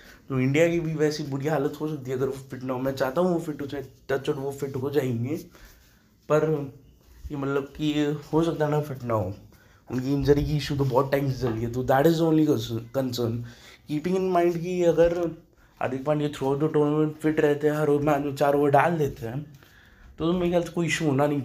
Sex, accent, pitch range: male, native, 125-155 Hz